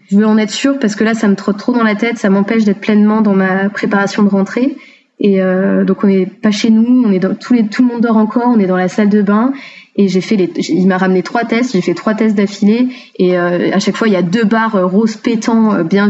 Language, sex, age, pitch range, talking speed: French, female, 20-39, 195-245 Hz, 285 wpm